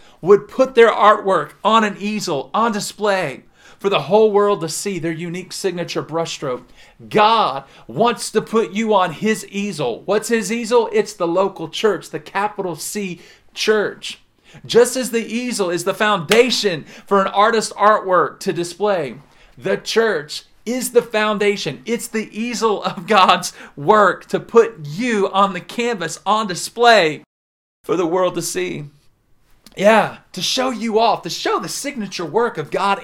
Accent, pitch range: American, 165-215 Hz